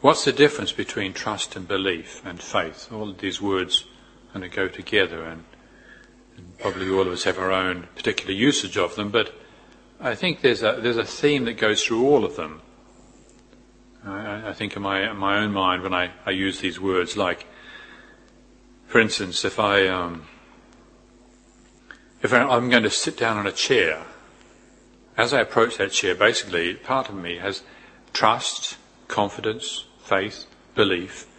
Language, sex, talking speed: English, male, 170 wpm